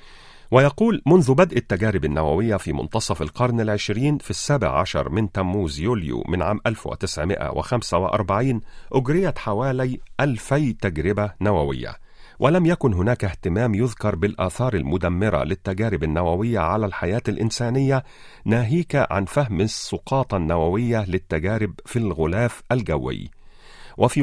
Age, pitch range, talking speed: 40-59, 95-125 Hz, 110 wpm